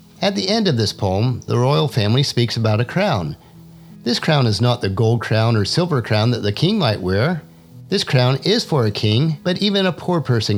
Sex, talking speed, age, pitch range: male, 220 wpm, 50-69, 105-165 Hz